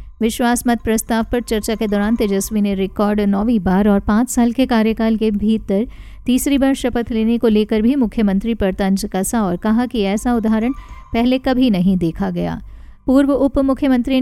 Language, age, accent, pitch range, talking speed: Hindi, 50-69, native, 205-240 Hz, 180 wpm